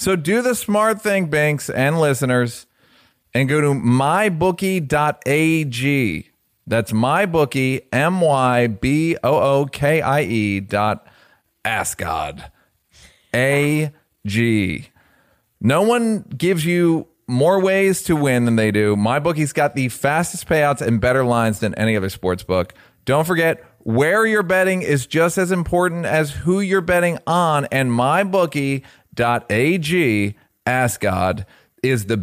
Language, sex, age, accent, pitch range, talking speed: English, male, 30-49, American, 115-155 Hz, 140 wpm